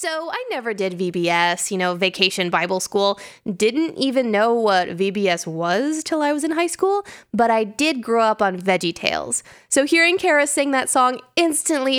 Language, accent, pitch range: English, American, 205-275 Hz